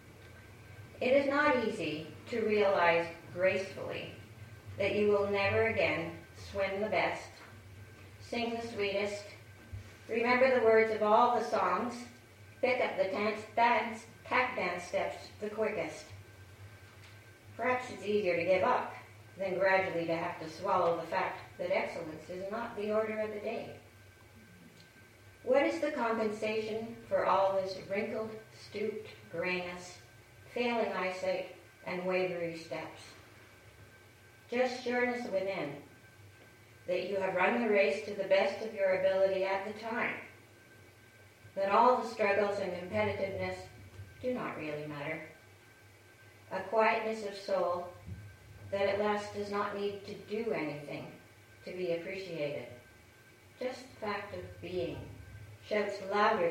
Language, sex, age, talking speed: English, female, 50-69, 130 wpm